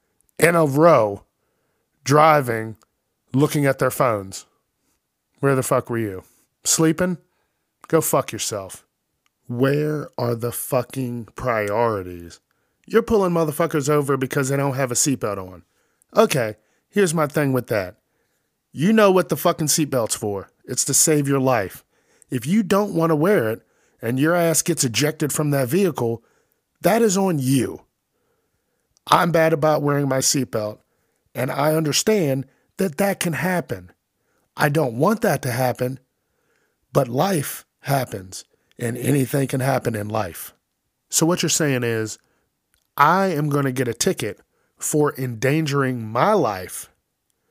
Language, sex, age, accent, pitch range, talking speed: English, male, 40-59, American, 125-165 Hz, 145 wpm